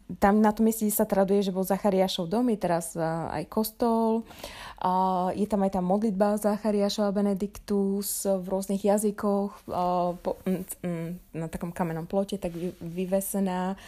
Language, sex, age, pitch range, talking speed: Slovak, female, 20-39, 195-225 Hz, 130 wpm